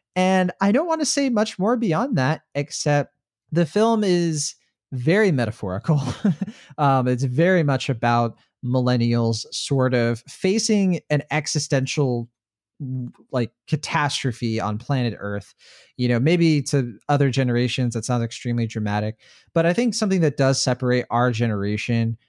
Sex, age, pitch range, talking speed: male, 30-49, 120-150 Hz, 135 wpm